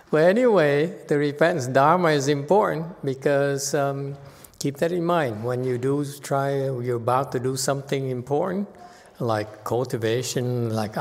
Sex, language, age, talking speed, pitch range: male, English, 60-79, 140 wpm, 115-145 Hz